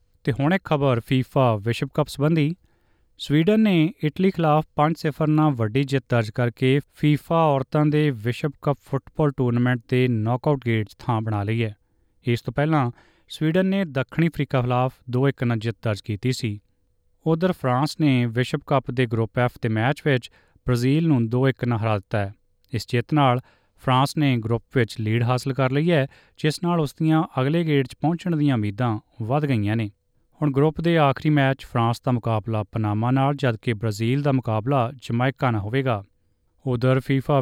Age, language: 30-49, Punjabi